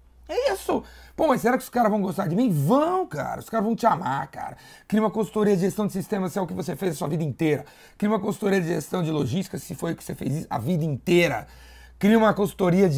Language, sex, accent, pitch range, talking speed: Portuguese, male, Brazilian, 150-205 Hz, 265 wpm